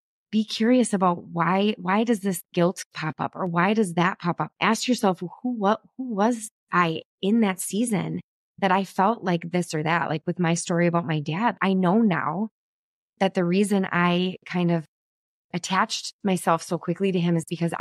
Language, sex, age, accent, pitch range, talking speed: English, female, 20-39, American, 170-205 Hz, 190 wpm